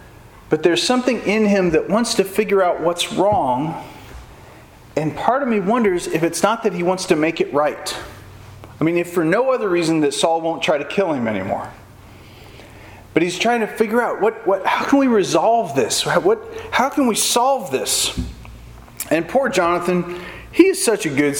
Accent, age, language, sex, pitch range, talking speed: American, 40-59, English, male, 155-260 Hz, 190 wpm